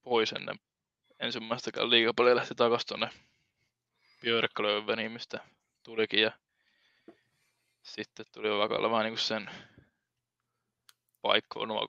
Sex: male